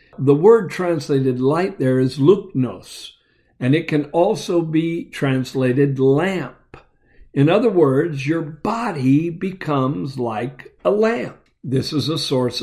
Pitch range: 130-170 Hz